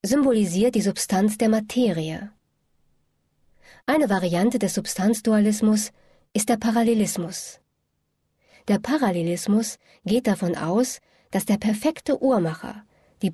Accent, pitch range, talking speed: German, 190-245 Hz, 100 wpm